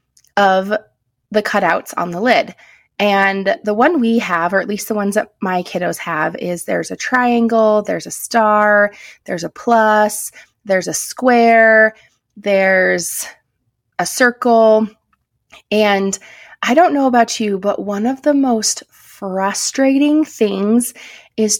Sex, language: female, English